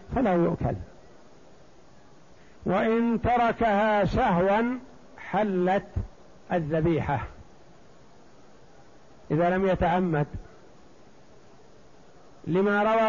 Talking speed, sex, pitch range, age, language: 55 wpm, male, 170-205 Hz, 60-79, Arabic